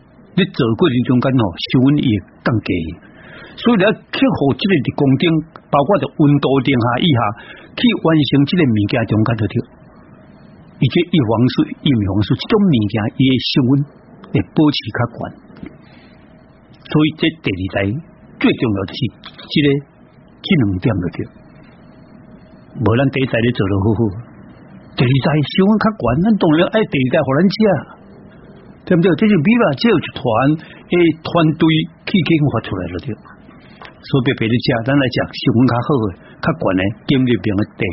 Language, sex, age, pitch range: Chinese, male, 60-79, 115-165 Hz